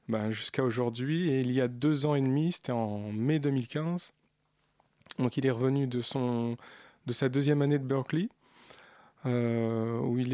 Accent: French